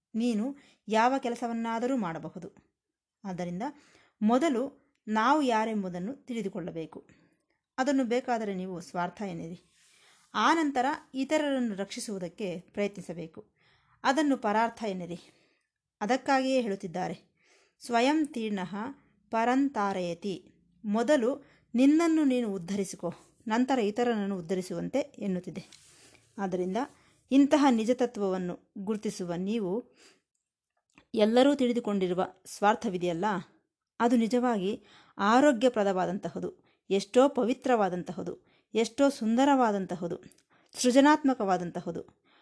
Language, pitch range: Kannada, 185-255 Hz